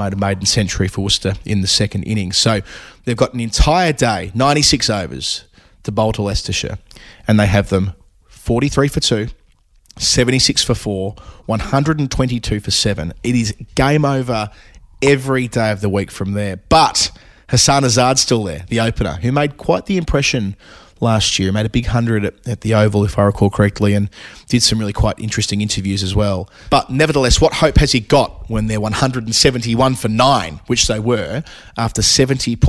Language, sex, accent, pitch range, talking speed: English, male, Australian, 100-125 Hz, 180 wpm